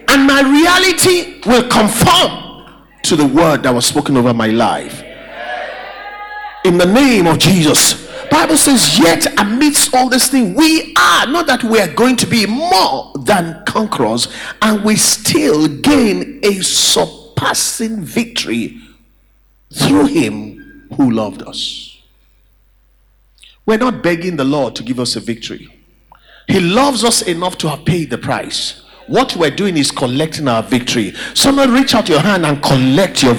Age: 50-69